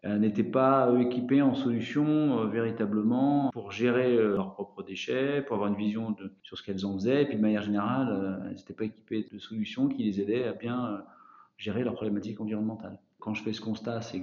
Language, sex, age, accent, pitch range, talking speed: French, male, 40-59, French, 100-115 Hz, 215 wpm